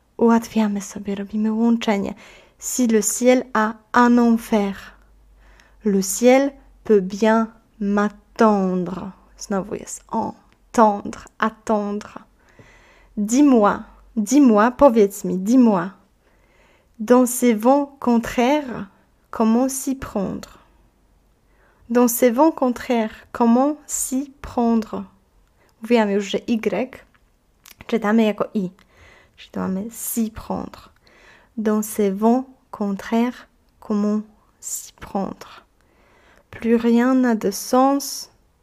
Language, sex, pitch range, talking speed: Polish, female, 210-245 Hz, 95 wpm